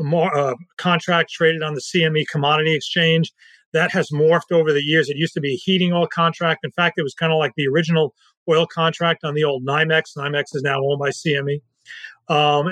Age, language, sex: 40-59, English, male